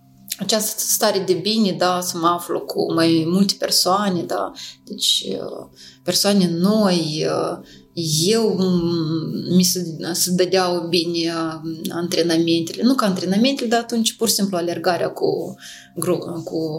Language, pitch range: Romanian, 170-245 Hz